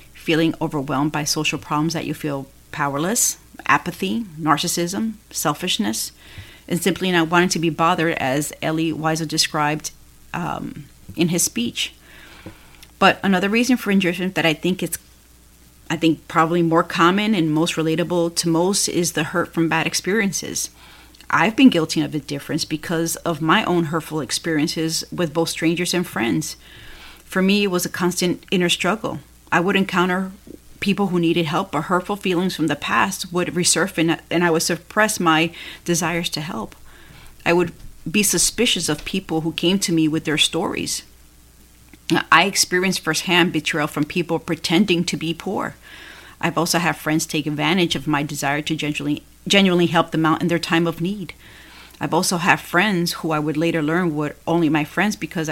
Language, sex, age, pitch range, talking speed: English, female, 40-59, 155-180 Hz, 170 wpm